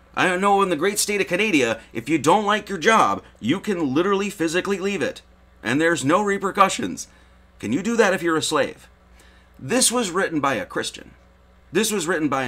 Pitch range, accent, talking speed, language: 115-190 Hz, American, 200 wpm, English